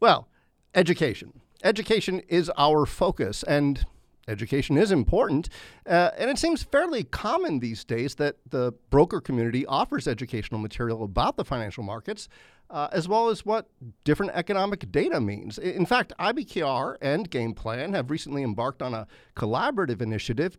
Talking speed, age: 145 wpm, 50-69